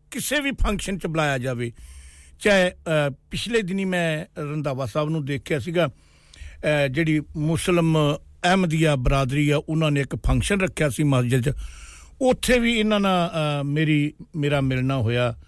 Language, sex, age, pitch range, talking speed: English, male, 60-79, 130-185 Hz, 140 wpm